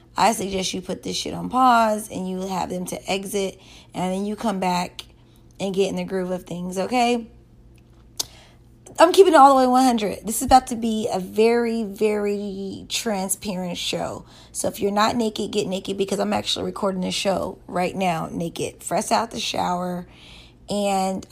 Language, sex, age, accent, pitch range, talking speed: English, female, 20-39, American, 190-260 Hz, 185 wpm